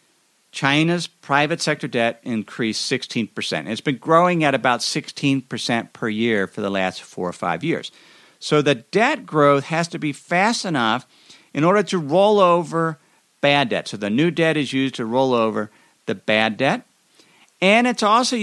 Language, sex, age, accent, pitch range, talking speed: English, male, 50-69, American, 135-195 Hz, 170 wpm